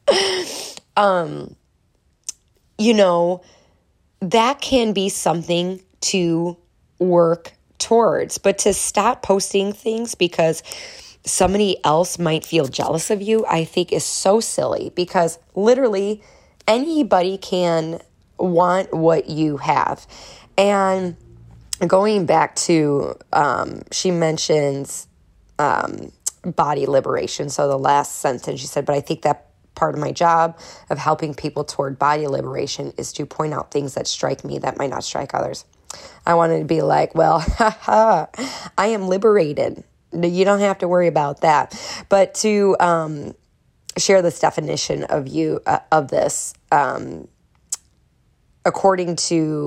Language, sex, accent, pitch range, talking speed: English, female, American, 150-195 Hz, 135 wpm